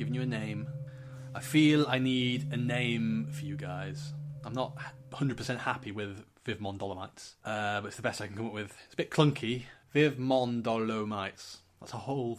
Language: English